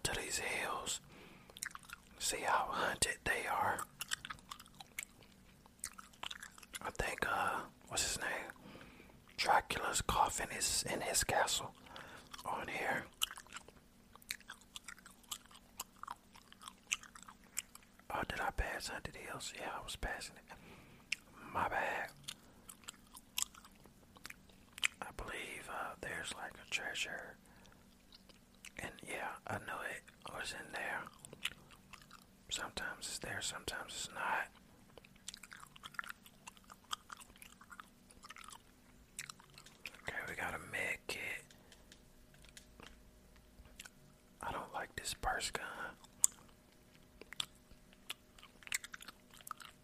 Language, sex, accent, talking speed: English, male, American, 80 wpm